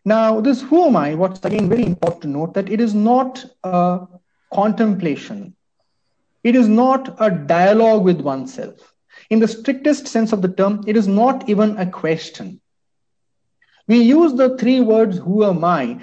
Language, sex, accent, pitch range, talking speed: English, male, Indian, 175-240 Hz, 170 wpm